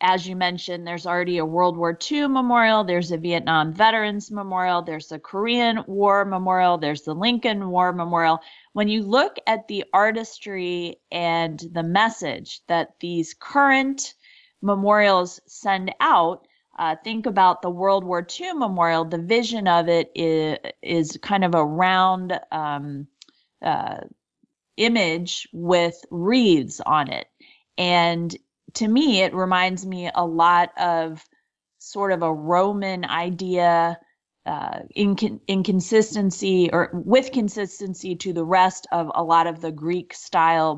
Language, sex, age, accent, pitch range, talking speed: English, female, 30-49, American, 165-200 Hz, 140 wpm